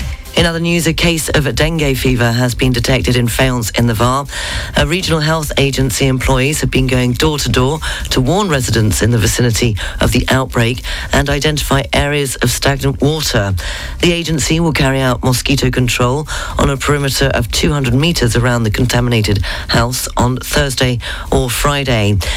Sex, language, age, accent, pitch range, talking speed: female, English, 40-59, British, 115-145 Hz, 165 wpm